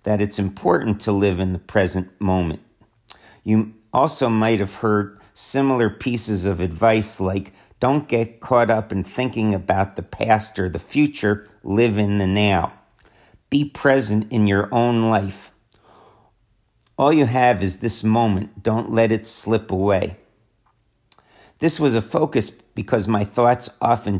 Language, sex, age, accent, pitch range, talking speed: English, male, 50-69, American, 100-115 Hz, 150 wpm